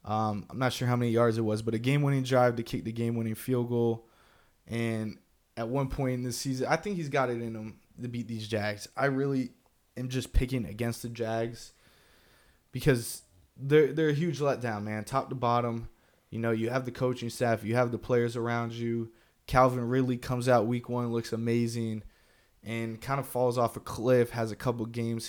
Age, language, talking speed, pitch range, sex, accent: 20-39, English, 205 wpm, 115-125 Hz, male, American